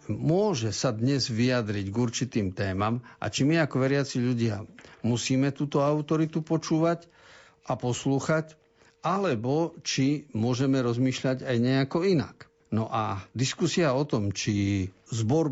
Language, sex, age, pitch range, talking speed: Slovak, male, 50-69, 110-145 Hz, 130 wpm